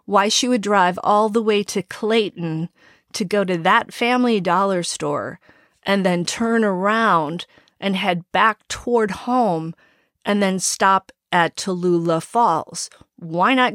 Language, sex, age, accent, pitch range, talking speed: English, female, 40-59, American, 175-220 Hz, 145 wpm